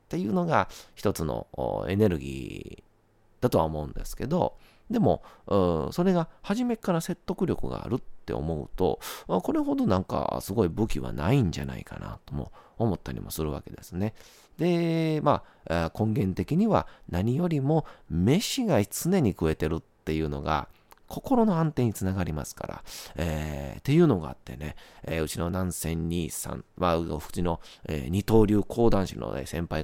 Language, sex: Japanese, male